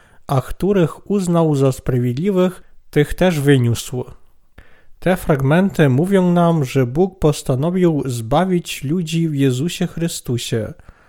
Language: Polish